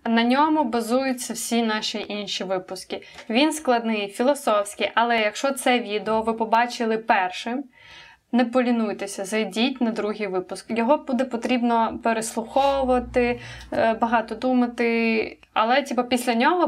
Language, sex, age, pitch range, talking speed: Ukrainian, female, 20-39, 210-245 Hz, 120 wpm